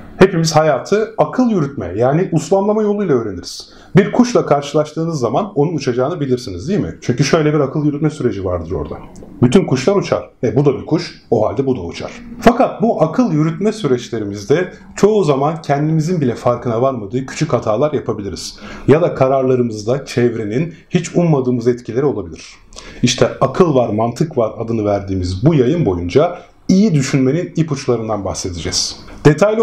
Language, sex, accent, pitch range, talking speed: Turkish, male, native, 120-170 Hz, 150 wpm